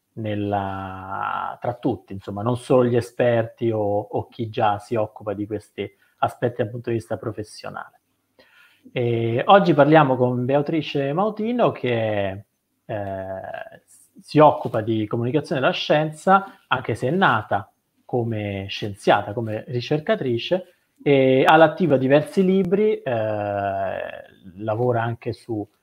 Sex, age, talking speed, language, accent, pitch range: male, 30-49, 125 wpm, Italian, native, 110-140 Hz